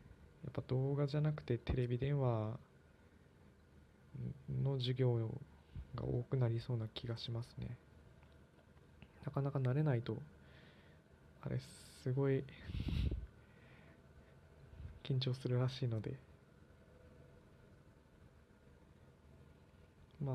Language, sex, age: Japanese, male, 20-39